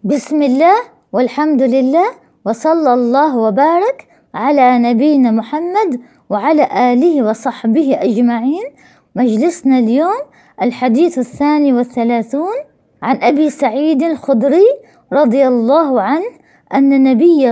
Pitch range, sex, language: 260-345 Hz, female, Arabic